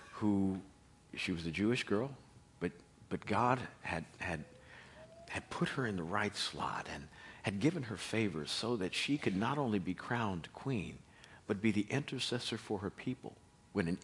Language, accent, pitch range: English, American, 90-125 Hz